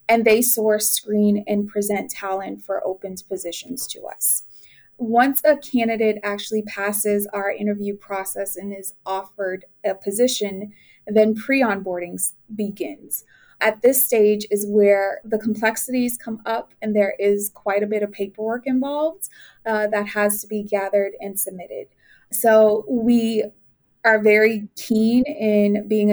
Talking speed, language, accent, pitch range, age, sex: 140 wpm, English, American, 205-230 Hz, 20-39, female